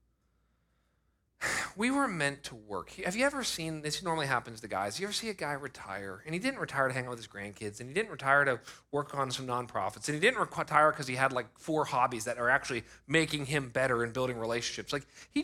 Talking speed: 235 wpm